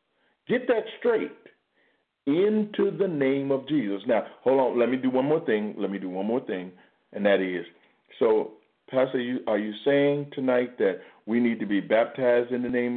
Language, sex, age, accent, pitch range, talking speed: English, male, 50-69, American, 105-150 Hz, 195 wpm